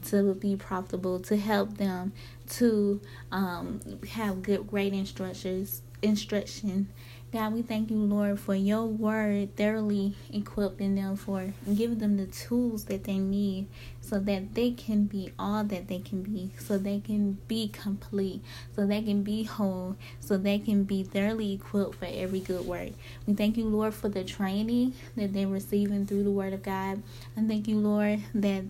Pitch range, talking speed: 185-210 Hz, 170 wpm